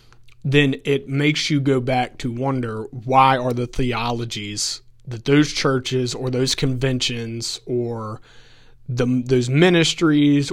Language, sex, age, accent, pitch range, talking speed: English, male, 30-49, American, 120-140 Hz, 120 wpm